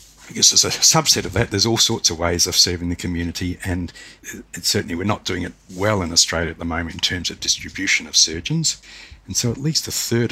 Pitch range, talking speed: 85-105 Hz, 235 wpm